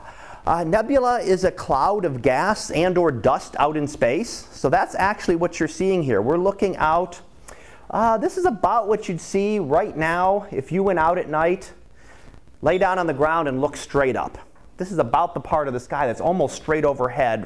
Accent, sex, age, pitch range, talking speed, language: American, male, 40-59, 135-180 Hz, 205 wpm, English